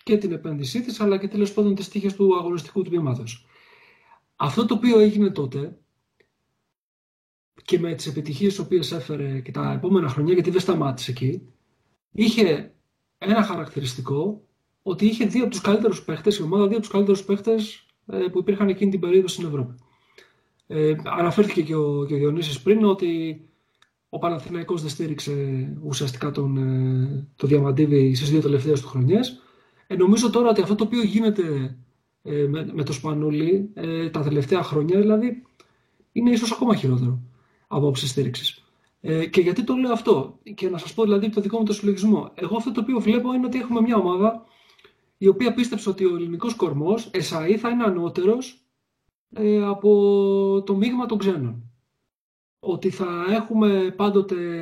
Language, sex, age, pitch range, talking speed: Greek, male, 40-59, 150-215 Hz, 160 wpm